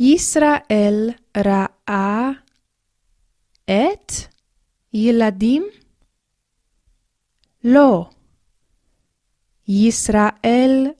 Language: Hebrew